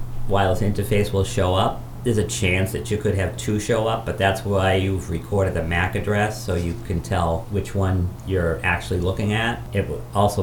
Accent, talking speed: American, 205 wpm